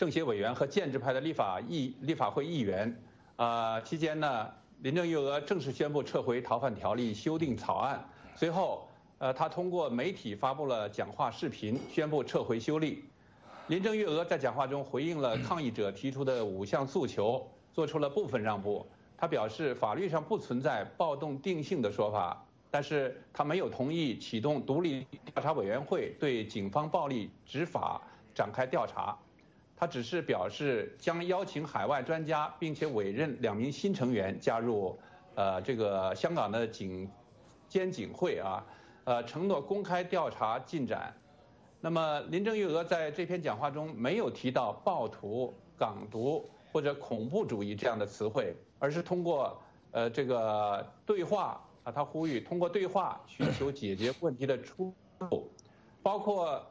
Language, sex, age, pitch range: English, male, 50-69, 120-165 Hz